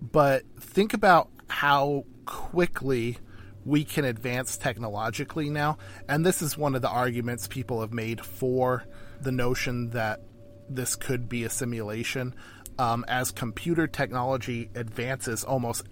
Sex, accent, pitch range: male, American, 110-135 Hz